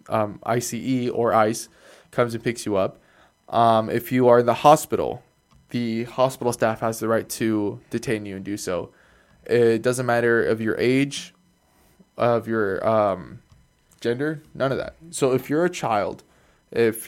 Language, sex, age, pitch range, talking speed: English, male, 20-39, 115-135 Hz, 165 wpm